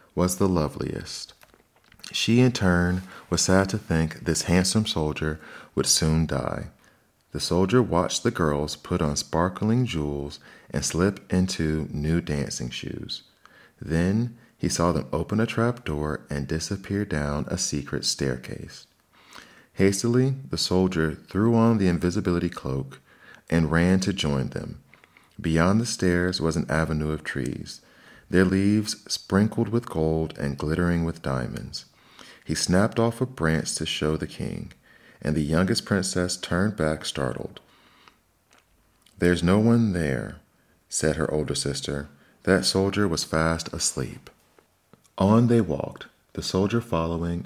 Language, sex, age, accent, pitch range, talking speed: English, male, 40-59, American, 75-100 Hz, 140 wpm